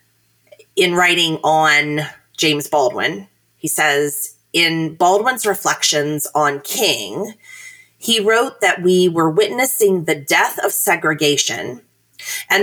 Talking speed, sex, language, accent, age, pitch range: 110 wpm, female, English, American, 30-49, 150-215 Hz